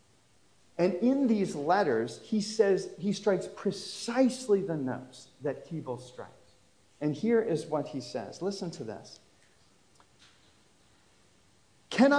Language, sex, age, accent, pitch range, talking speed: English, male, 40-59, American, 150-225 Hz, 120 wpm